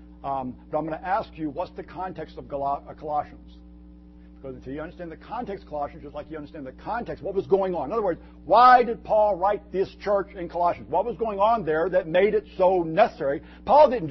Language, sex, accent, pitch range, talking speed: English, male, American, 160-235 Hz, 225 wpm